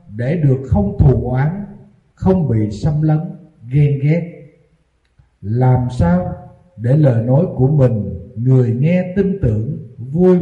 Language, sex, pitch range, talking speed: Vietnamese, male, 115-155 Hz, 130 wpm